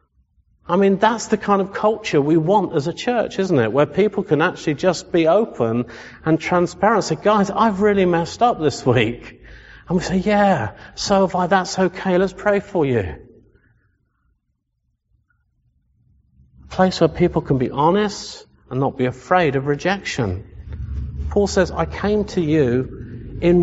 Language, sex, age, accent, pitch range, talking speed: English, male, 50-69, British, 145-205 Hz, 165 wpm